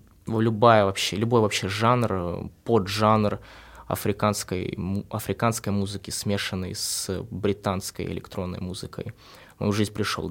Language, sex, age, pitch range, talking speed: Russian, male, 20-39, 90-105 Hz, 105 wpm